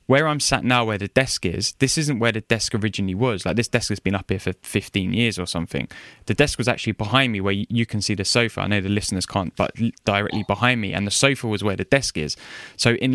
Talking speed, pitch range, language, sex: 265 wpm, 100-120 Hz, English, male